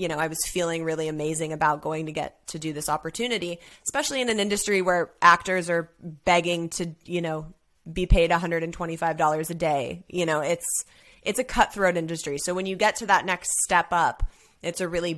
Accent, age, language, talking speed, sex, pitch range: American, 20-39, English, 200 wpm, female, 170-205 Hz